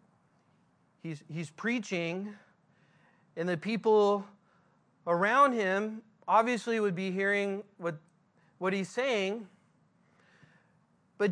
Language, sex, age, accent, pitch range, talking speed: English, male, 40-59, American, 175-215 Hz, 90 wpm